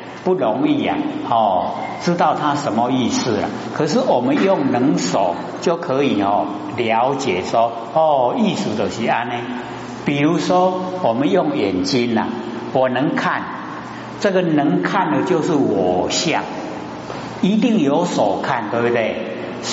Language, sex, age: Chinese, male, 60-79